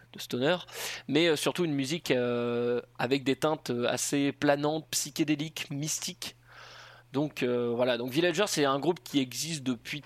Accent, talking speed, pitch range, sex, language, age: French, 150 wpm, 120-150 Hz, male, French, 20-39